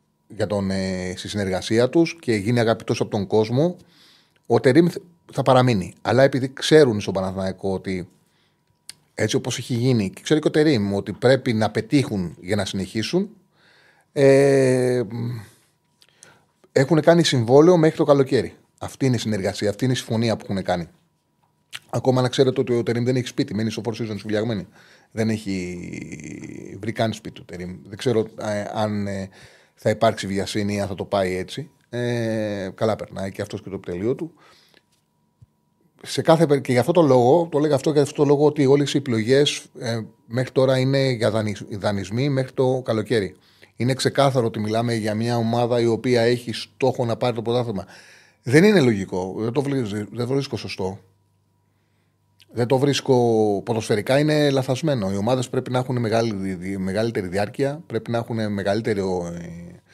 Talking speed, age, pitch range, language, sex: 165 wpm, 30-49, 100-135 Hz, Greek, male